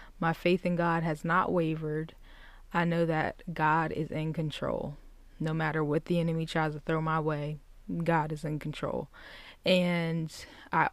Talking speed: 165 wpm